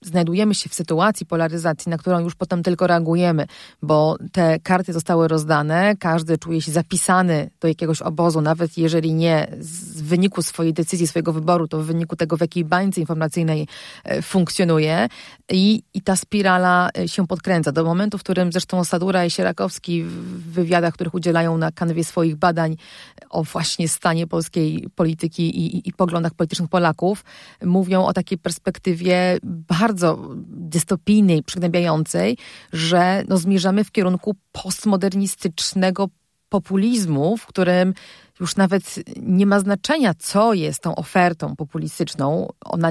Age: 30-49